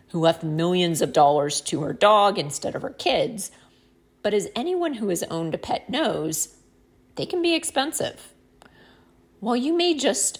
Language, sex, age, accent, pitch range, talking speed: English, female, 40-59, American, 155-260 Hz, 165 wpm